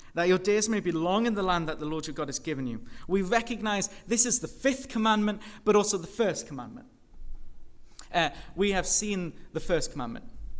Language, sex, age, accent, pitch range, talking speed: English, male, 30-49, British, 165-215 Hz, 205 wpm